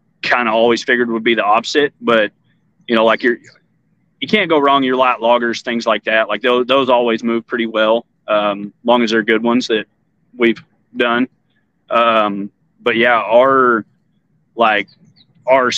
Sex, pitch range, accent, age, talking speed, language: male, 110-130 Hz, American, 30-49, 170 wpm, English